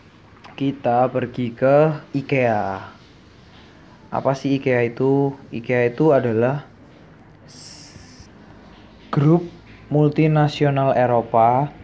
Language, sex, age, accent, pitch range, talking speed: Indonesian, male, 20-39, native, 120-140 Hz, 70 wpm